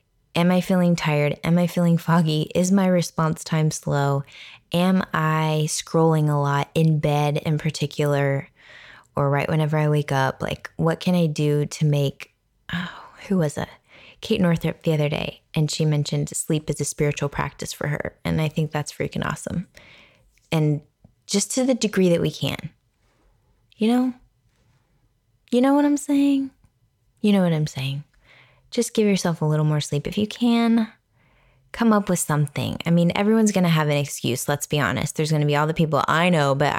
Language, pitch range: English, 145-170 Hz